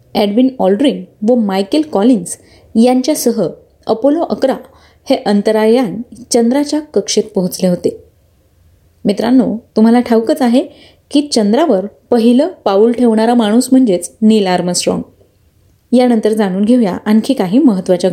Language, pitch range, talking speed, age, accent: Marathi, 200-260 Hz, 110 wpm, 30-49, native